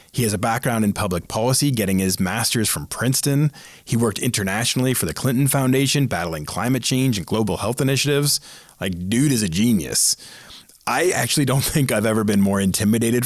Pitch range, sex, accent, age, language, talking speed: 105-140 Hz, male, American, 30-49, English, 180 wpm